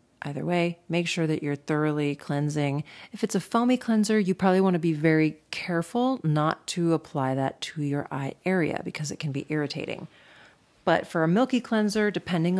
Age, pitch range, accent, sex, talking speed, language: 40-59, 145-185 Hz, American, female, 180 wpm, English